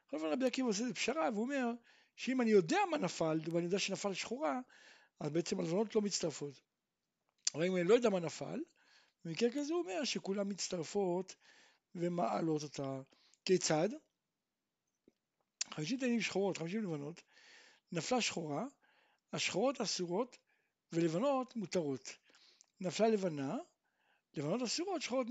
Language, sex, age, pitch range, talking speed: Hebrew, male, 60-79, 170-240 Hz, 65 wpm